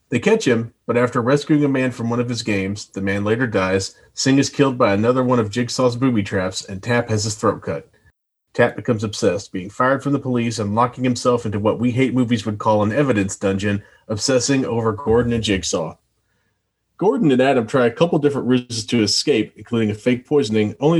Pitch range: 110-140 Hz